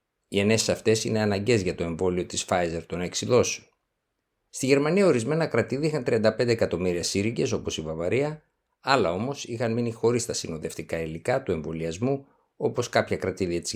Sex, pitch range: male, 90-125 Hz